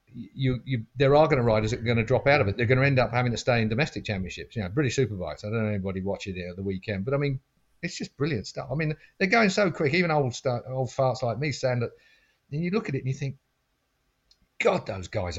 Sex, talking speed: male, 285 wpm